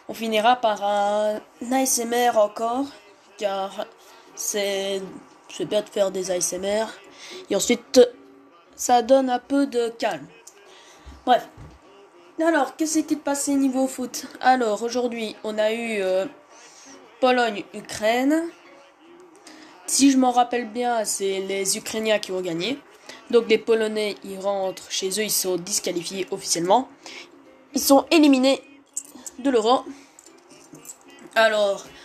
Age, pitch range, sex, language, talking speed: 10-29, 205-275 Hz, female, French, 120 wpm